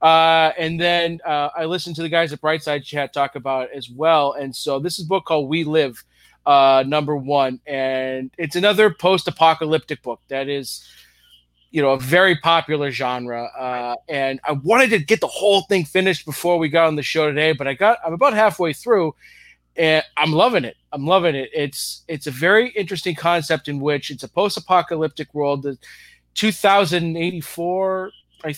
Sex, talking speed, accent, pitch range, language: male, 190 wpm, American, 140-170 Hz, English